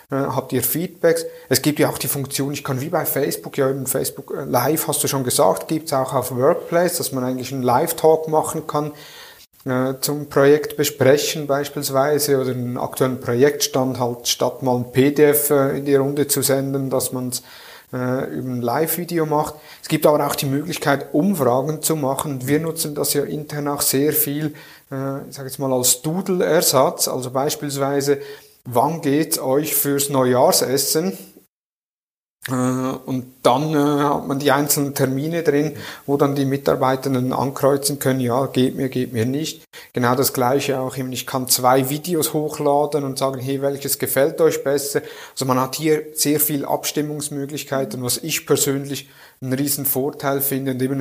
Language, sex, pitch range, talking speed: German, male, 130-150 Hz, 170 wpm